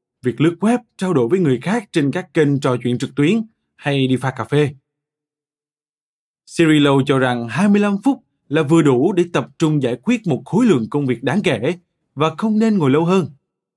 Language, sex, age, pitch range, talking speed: Vietnamese, male, 20-39, 135-175 Hz, 200 wpm